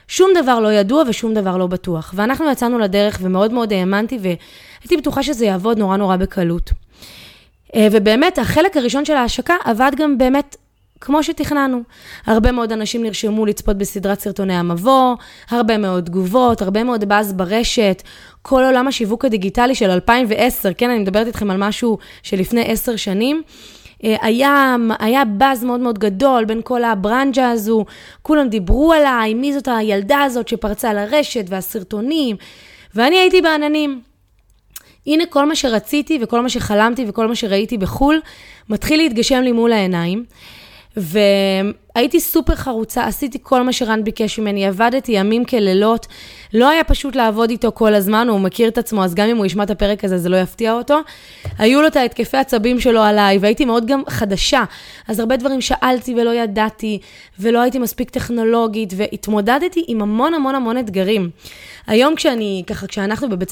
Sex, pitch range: female, 210-260 Hz